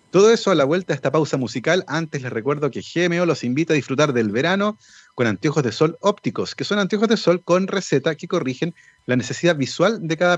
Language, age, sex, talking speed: Spanish, 40-59, male, 225 wpm